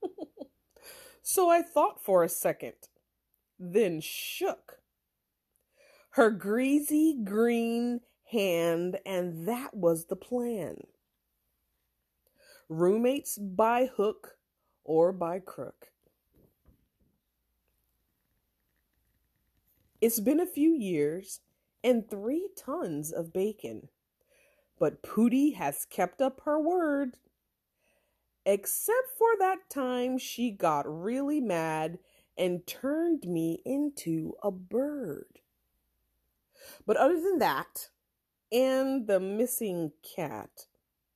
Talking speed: 90 wpm